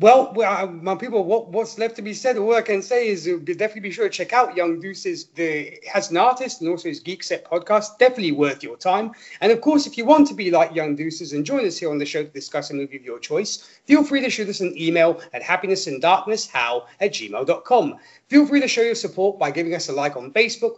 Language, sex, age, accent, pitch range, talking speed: English, male, 30-49, British, 165-250 Hz, 250 wpm